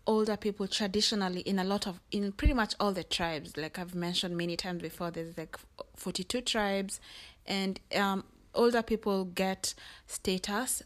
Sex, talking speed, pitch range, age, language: female, 160 wpm, 180-205 Hz, 20-39, English